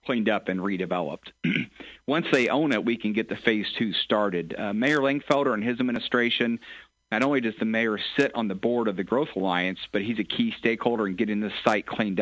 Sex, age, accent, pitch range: male, 40-59, American, 105-120 Hz